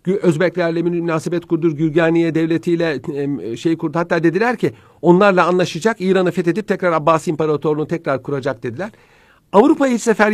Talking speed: 135 wpm